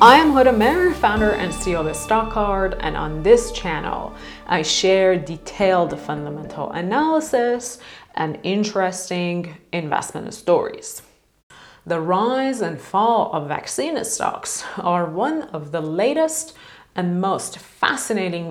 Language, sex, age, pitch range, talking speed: English, female, 30-49, 160-220 Hz, 120 wpm